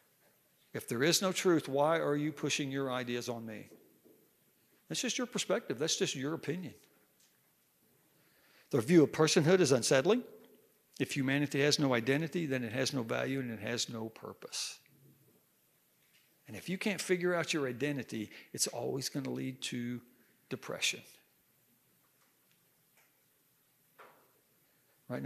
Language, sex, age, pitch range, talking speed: English, male, 60-79, 125-150 Hz, 140 wpm